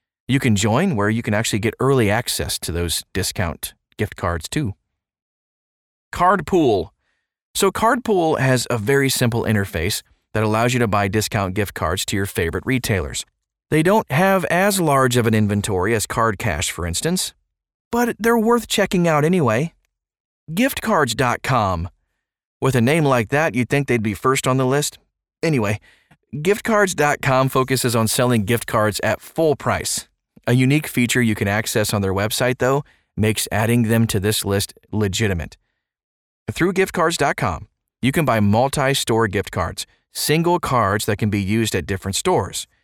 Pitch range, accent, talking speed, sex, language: 105-140 Hz, American, 160 wpm, male, English